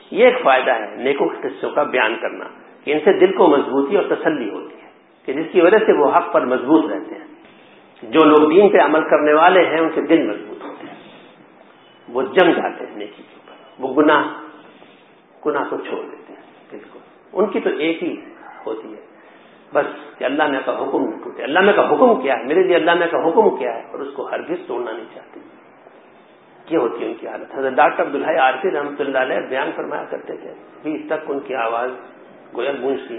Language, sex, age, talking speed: English, male, 50-69, 155 wpm